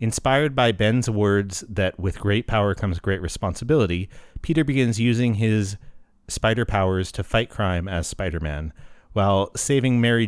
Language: English